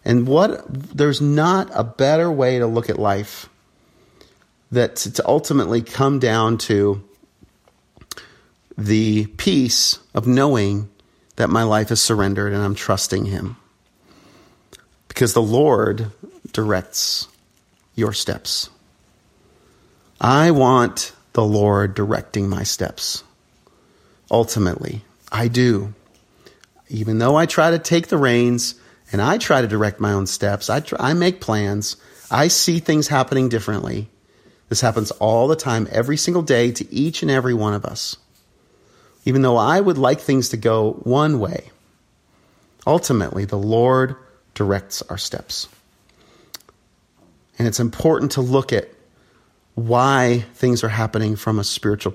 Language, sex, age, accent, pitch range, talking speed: English, male, 40-59, American, 105-130 Hz, 130 wpm